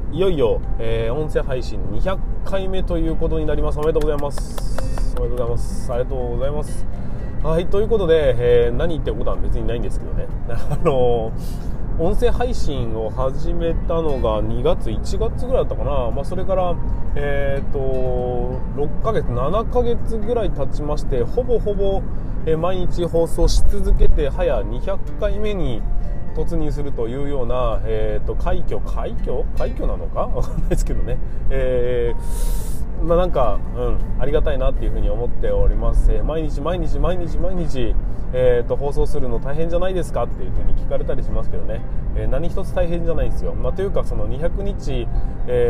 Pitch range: 115-165 Hz